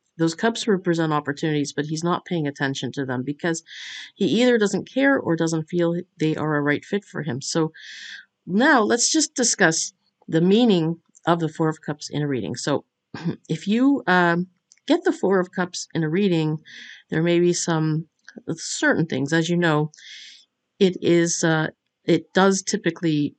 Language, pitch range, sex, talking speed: English, 150-185 Hz, female, 175 wpm